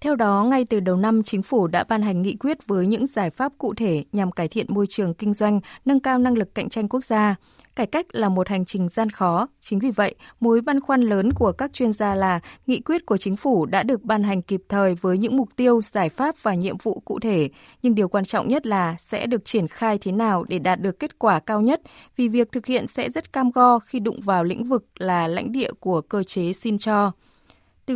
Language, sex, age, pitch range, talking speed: Vietnamese, female, 20-39, 195-245 Hz, 250 wpm